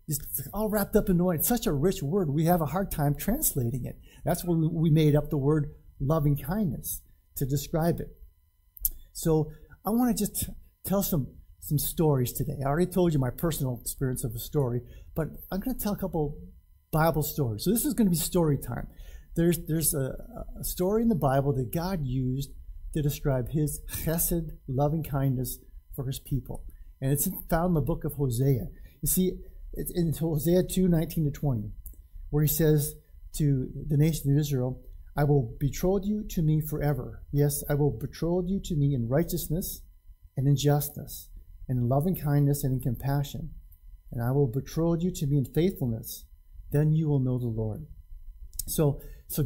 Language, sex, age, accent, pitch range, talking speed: English, male, 50-69, American, 125-165 Hz, 185 wpm